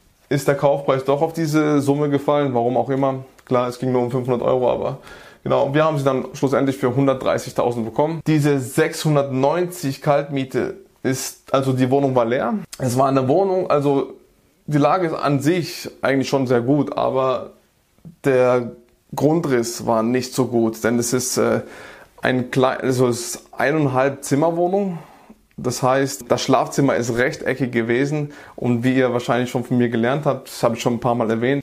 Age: 20-39